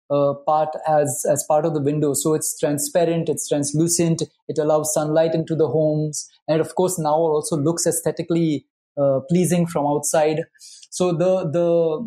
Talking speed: 165 wpm